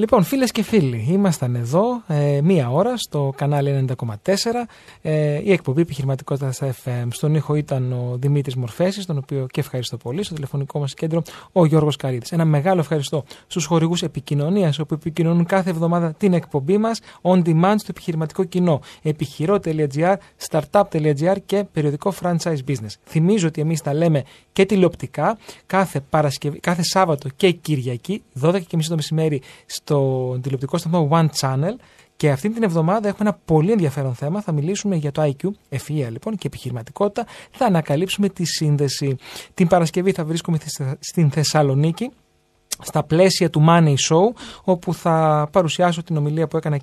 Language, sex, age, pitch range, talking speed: Greek, male, 30-49, 140-180 Hz, 155 wpm